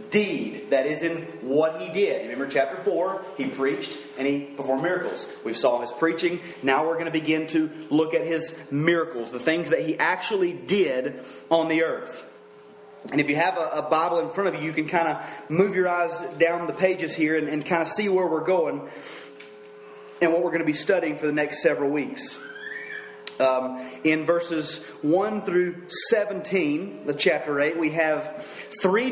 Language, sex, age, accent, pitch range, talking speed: English, male, 30-49, American, 150-205 Hz, 190 wpm